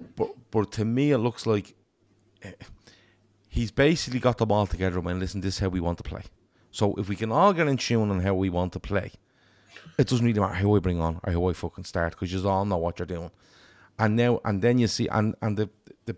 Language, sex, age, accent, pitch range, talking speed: English, male, 30-49, Irish, 95-115 Hz, 250 wpm